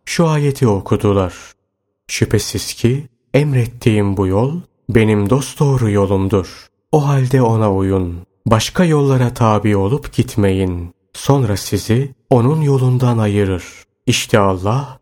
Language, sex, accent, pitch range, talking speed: Turkish, male, native, 100-130 Hz, 110 wpm